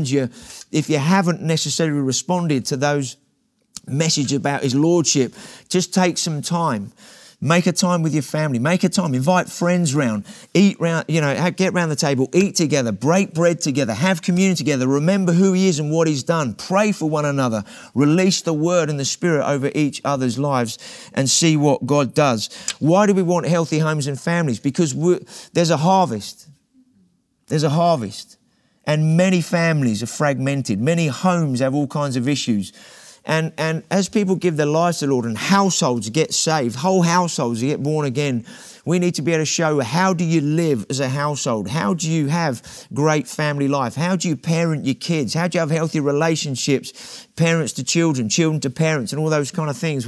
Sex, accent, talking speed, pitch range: male, British, 195 wpm, 140-175 Hz